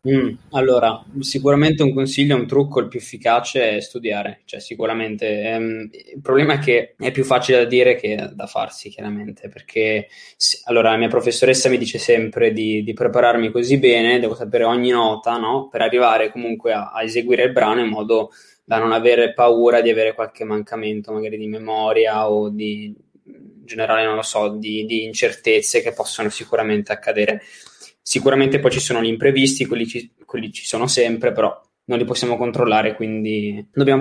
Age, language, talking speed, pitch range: 20-39, Italian, 175 wpm, 110-130 Hz